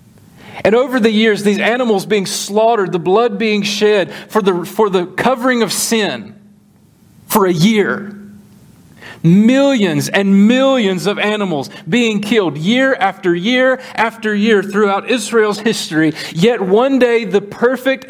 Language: English